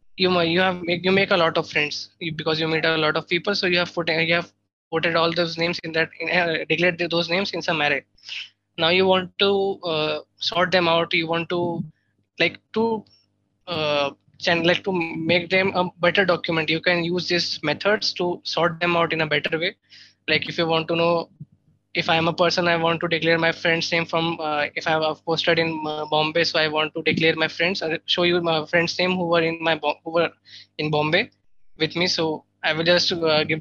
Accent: Indian